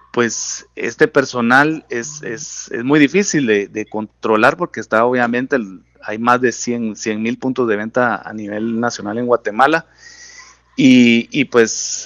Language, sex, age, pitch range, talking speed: Spanish, male, 40-59, 110-135 Hz, 155 wpm